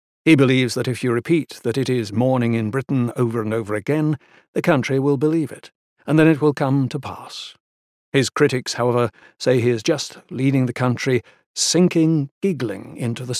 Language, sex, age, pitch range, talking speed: English, male, 60-79, 115-145 Hz, 190 wpm